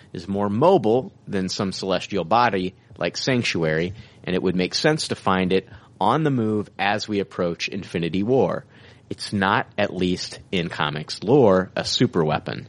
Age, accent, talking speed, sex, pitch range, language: 30-49, American, 160 wpm, male, 90-120 Hz, English